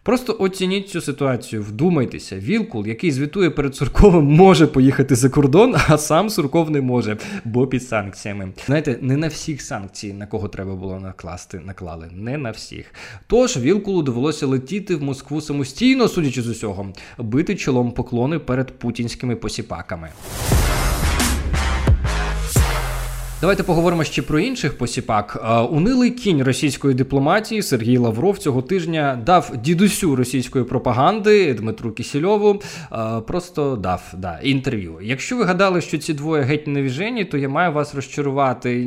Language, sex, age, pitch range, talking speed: Ukrainian, male, 20-39, 120-175 Hz, 135 wpm